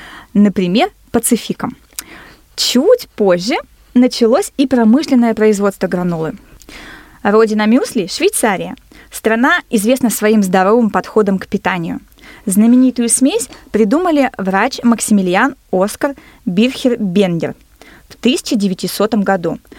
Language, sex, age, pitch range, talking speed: Russian, female, 20-39, 205-260 Hz, 95 wpm